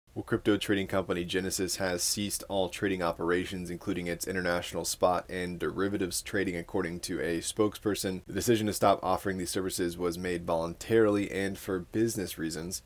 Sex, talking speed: male, 160 wpm